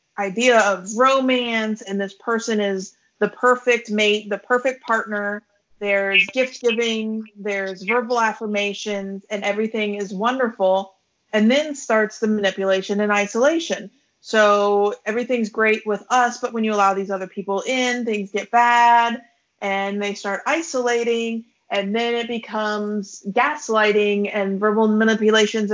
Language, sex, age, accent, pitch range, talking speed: English, female, 30-49, American, 205-235 Hz, 135 wpm